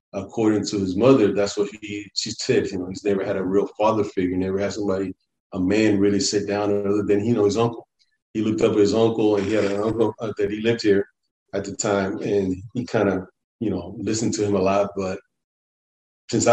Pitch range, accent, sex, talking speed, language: 100-115 Hz, American, male, 230 wpm, English